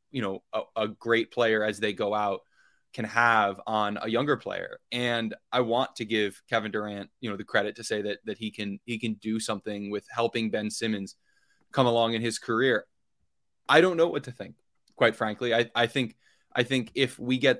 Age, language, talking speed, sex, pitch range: 20-39, English, 210 wpm, male, 110-130 Hz